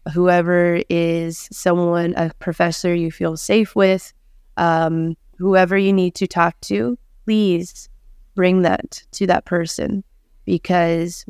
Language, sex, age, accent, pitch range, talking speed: English, female, 20-39, American, 165-180 Hz, 120 wpm